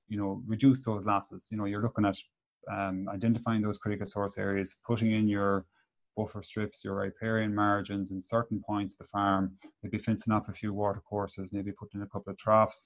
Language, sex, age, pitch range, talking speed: English, male, 30-49, 95-110 Hz, 205 wpm